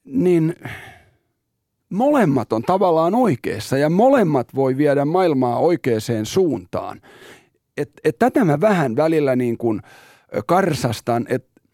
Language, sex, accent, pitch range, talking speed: Finnish, male, native, 120-175 Hz, 110 wpm